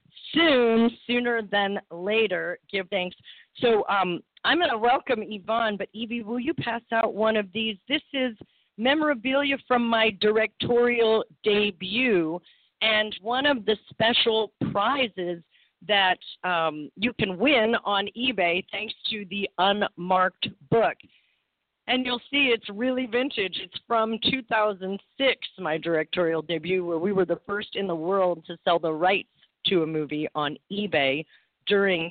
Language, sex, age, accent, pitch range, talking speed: English, female, 40-59, American, 180-230 Hz, 145 wpm